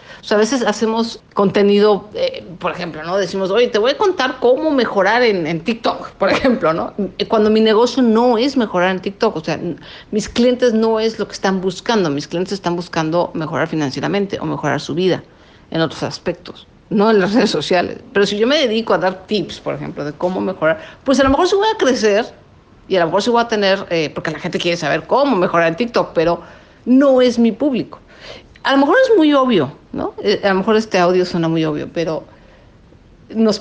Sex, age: female, 50-69